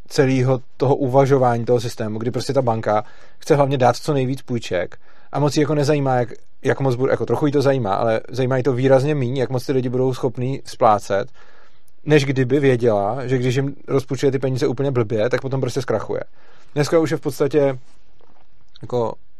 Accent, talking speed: native, 195 wpm